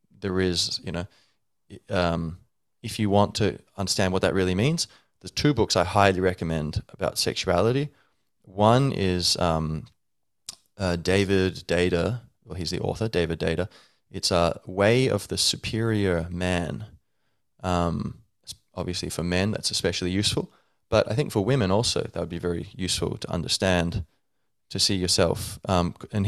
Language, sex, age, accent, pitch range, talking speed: English, male, 20-39, Australian, 85-105 Hz, 155 wpm